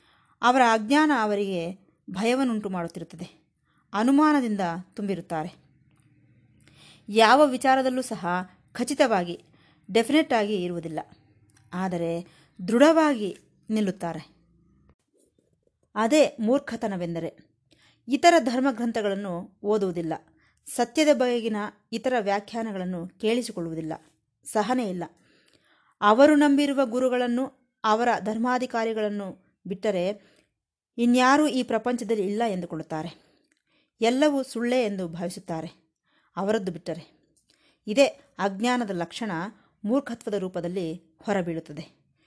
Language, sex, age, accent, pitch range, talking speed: Kannada, female, 20-39, native, 175-255 Hz, 70 wpm